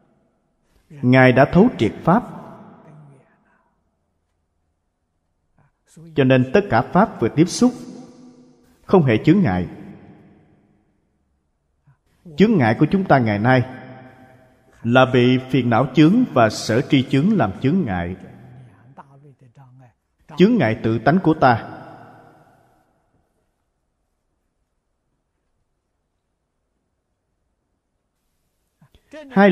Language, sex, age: Vietnamese, male, 30-49